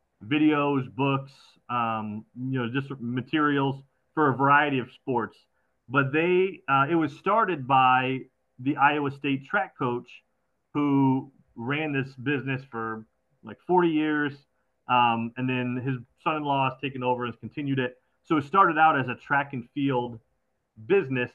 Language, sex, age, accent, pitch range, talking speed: English, male, 30-49, American, 125-150 Hz, 150 wpm